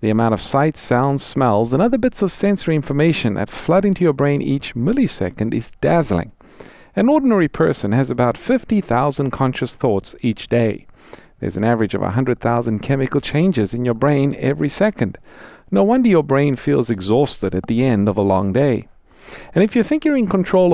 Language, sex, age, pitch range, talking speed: English, male, 50-69, 115-170 Hz, 180 wpm